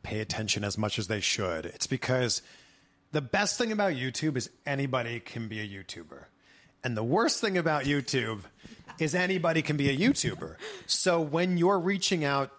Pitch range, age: 115-155 Hz, 30-49